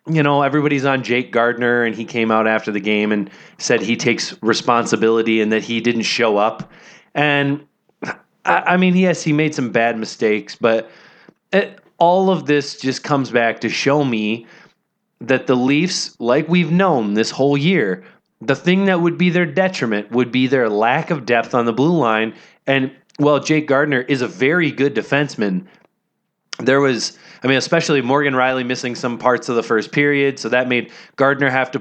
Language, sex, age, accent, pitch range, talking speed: English, male, 30-49, American, 120-155 Hz, 185 wpm